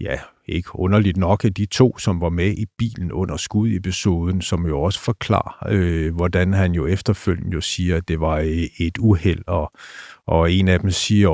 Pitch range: 85-100 Hz